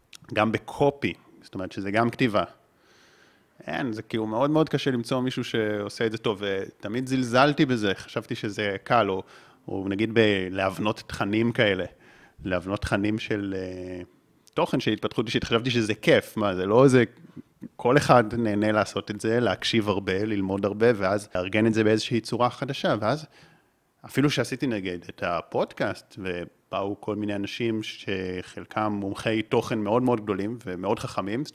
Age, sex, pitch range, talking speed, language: 30-49, male, 100-120 Hz, 150 wpm, Hebrew